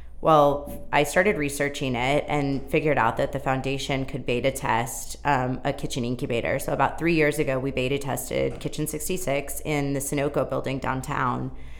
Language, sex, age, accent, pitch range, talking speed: English, female, 20-39, American, 135-160 Hz, 175 wpm